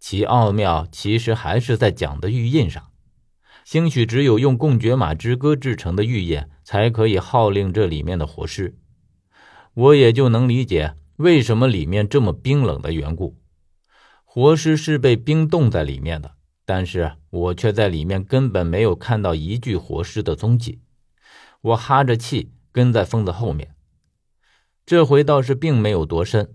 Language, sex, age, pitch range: Chinese, male, 50-69, 85-125 Hz